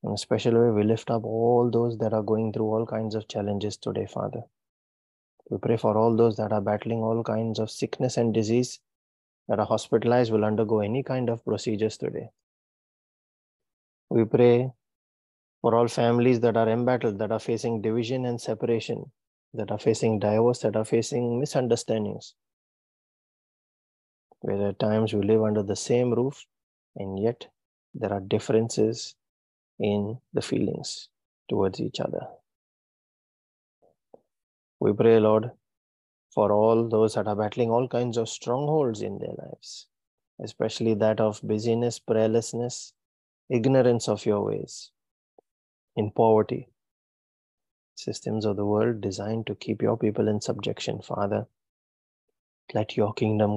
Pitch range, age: 105-115 Hz, 20-39